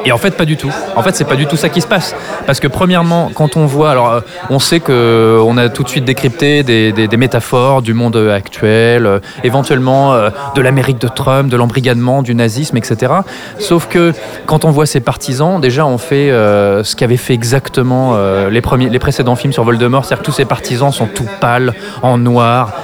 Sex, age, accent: male, 20-39, French